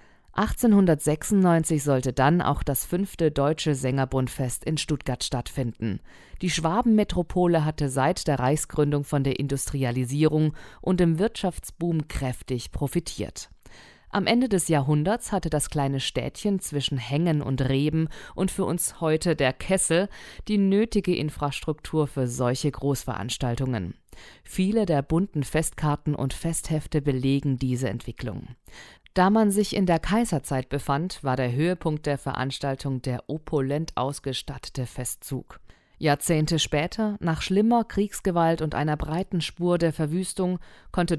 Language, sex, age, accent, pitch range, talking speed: German, female, 50-69, German, 135-175 Hz, 125 wpm